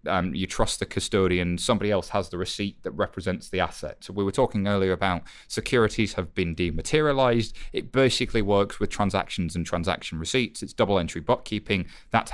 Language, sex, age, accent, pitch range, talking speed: English, male, 30-49, British, 90-115 Hz, 180 wpm